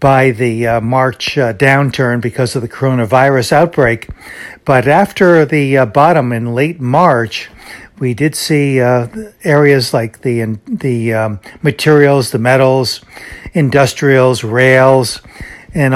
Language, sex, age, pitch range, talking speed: English, male, 60-79, 125-150 Hz, 130 wpm